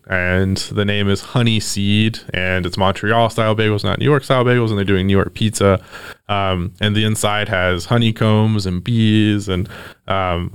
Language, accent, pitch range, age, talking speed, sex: English, American, 95-110 Hz, 20-39, 180 wpm, male